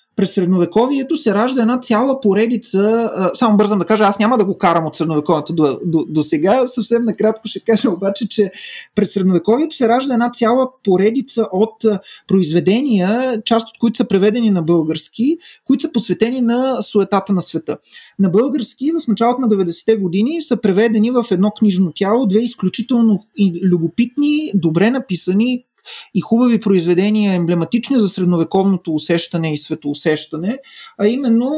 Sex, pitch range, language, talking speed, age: male, 185-235 Hz, Bulgarian, 150 wpm, 30-49